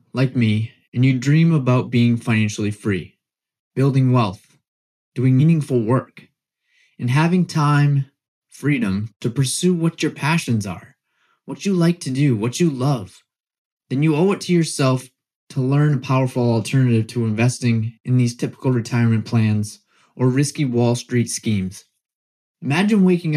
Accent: American